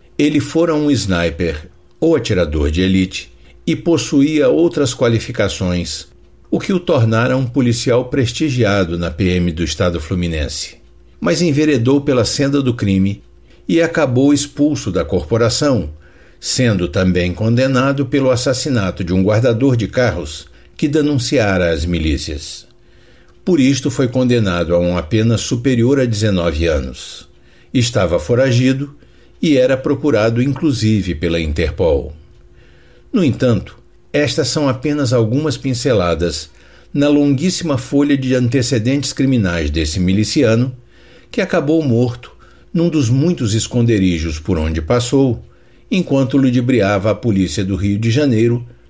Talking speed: 125 wpm